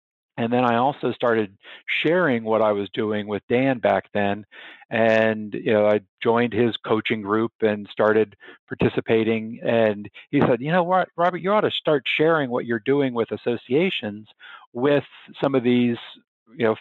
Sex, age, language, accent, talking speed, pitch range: male, 50-69, English, American, 170 wpm, 110-135 Hz